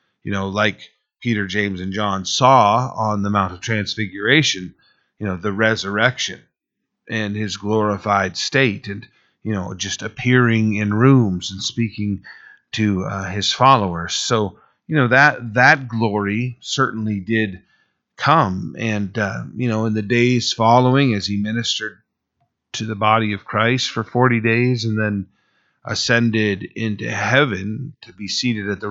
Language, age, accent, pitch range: English, 40-59, American, 100-120 Hz